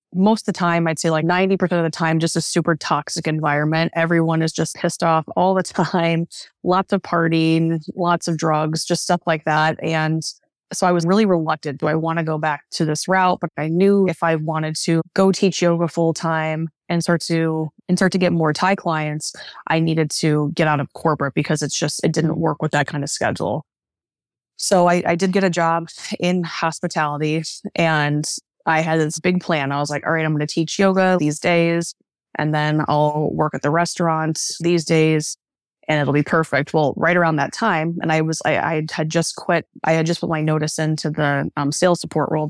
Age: 20-39